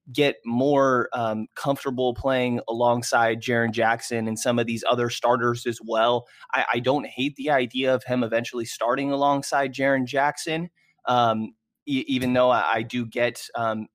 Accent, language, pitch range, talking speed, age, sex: American, English, 115-125 Hz, 155 wpm, 20-39, male